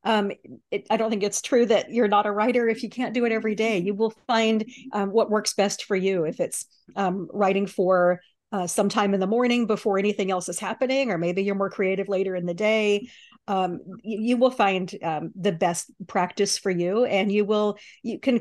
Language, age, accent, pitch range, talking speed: English, 40-59, American, 190-225 Hz, 215 wpm